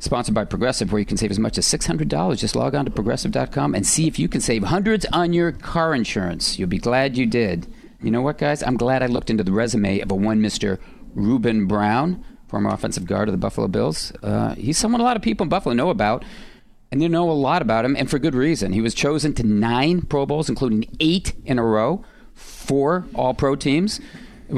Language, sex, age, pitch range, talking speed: English, male, 40-59, 110-160 Hz, 230 wpm